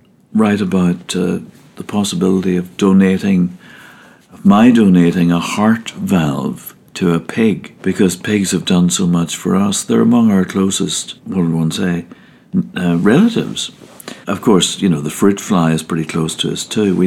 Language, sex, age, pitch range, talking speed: English, male, 60-79, 90-145 Hz, 170 wpm